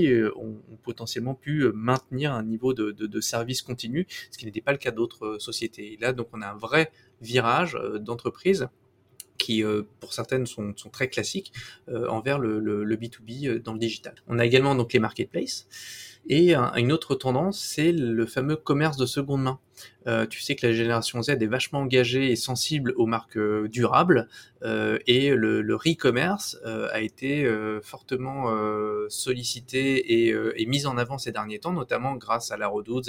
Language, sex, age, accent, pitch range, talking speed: French, male, 20-39, French, 115-145 Hz, 185 wpm